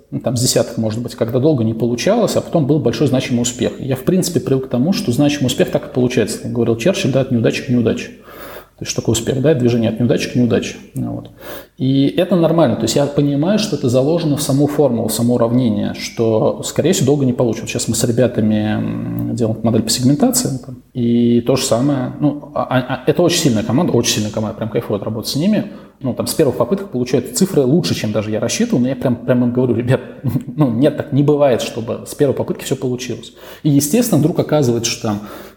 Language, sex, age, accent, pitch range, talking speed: Russian, male, 20-39, native, 115-140 Hz, 220 wpm